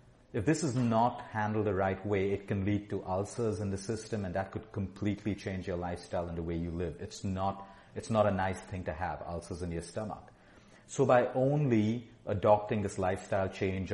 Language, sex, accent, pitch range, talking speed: English, male, Indian, 95-125 Hz, 205 wpm